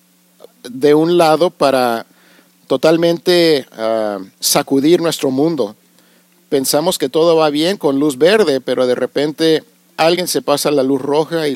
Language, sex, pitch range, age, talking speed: Spanish, male, 110-150 Hz, 50-69, 135 wpm